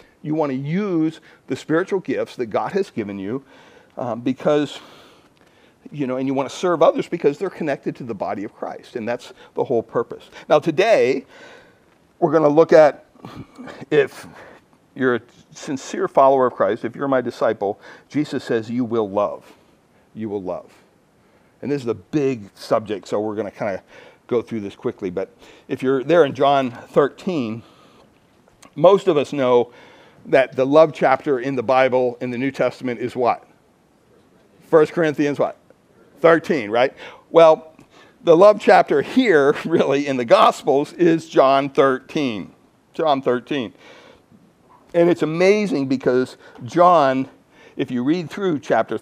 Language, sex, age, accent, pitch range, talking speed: English, male, 50-69, American, 125-170 Hz, 160 wpm